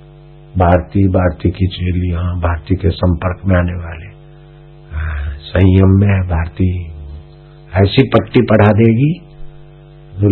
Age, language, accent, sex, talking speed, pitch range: 60-79, Hindi, native, male, 105 wpm, 100-150 Hz